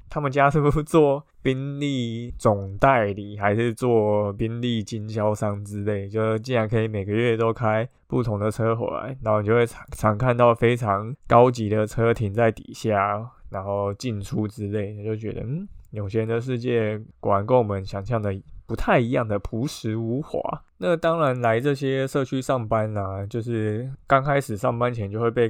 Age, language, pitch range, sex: 20-39, Chinese, 105-125 Hz, male